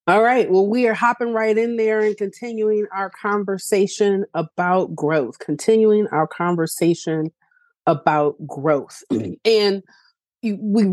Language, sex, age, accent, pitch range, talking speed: English, female, 30-49, American, 185-225 Hz, 120 wpm